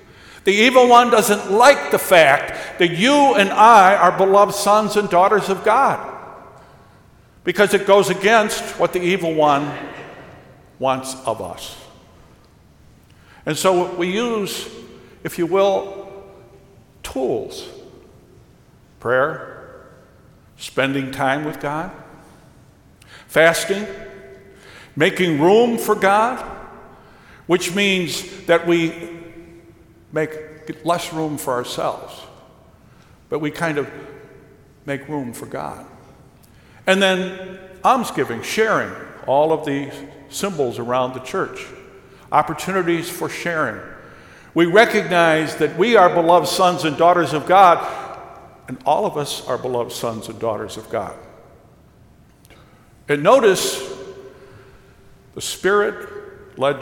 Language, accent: English, American